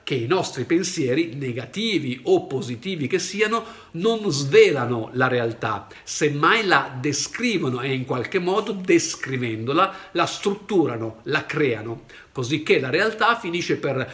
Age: 50-69